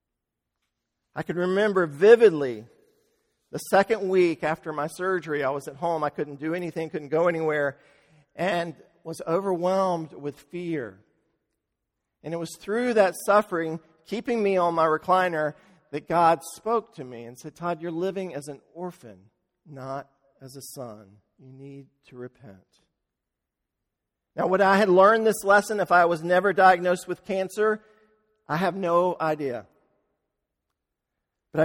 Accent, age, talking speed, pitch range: American, 50-69, 145 wpm, 130-180 Hz